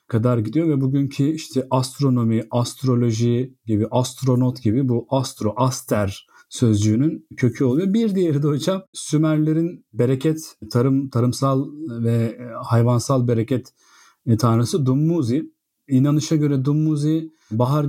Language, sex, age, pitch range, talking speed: Turkish, male, 40-59, 120-150 Hz, 110 wpm